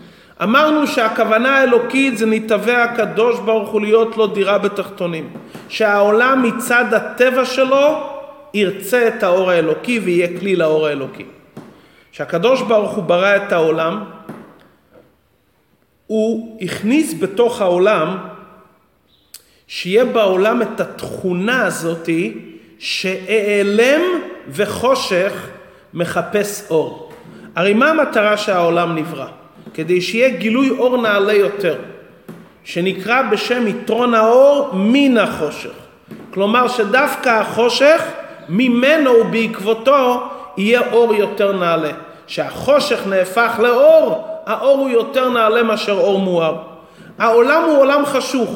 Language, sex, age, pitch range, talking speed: Hebrew, male, 40-59, 190-240 Hz, 105 wpm